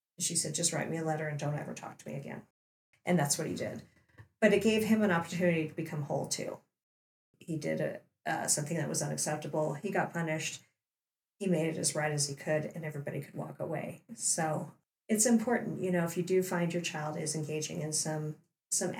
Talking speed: 220 wpm